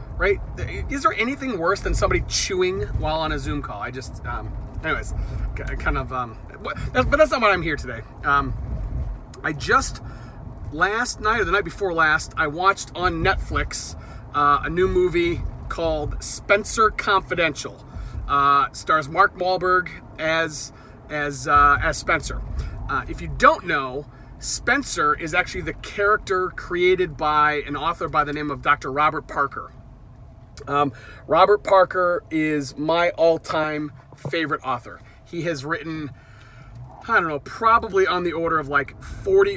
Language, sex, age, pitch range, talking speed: English, male, 30-49, 135-170 Hz, 150 wpm